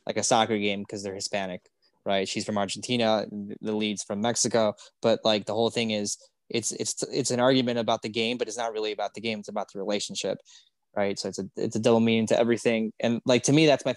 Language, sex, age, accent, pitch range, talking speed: English, male, 20-39, American, 110-135 Hz, 240 wpm